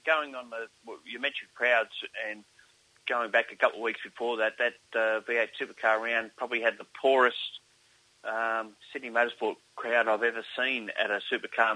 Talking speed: 175 wpm